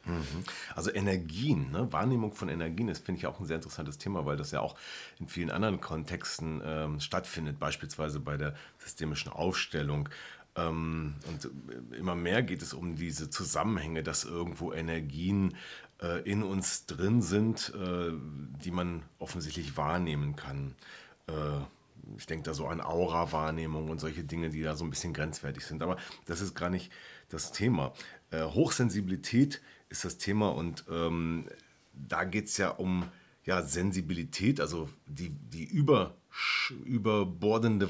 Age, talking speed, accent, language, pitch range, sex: 40-59, 150 wpm, German, German, 80-100 Hz, male